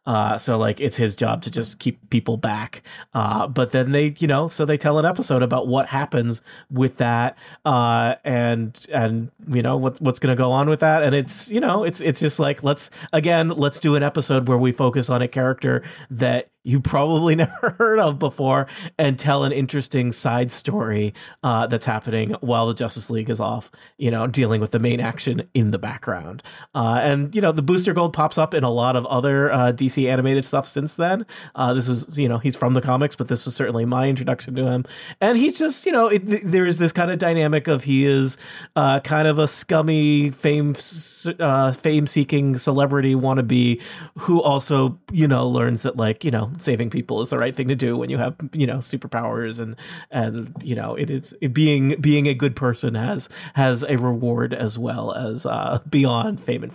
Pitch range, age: 120-150 Hz, 30-49